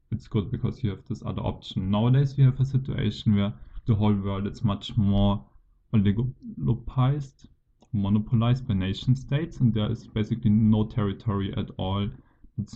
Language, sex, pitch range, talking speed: English, male, 100-120 Hz, 160 wpm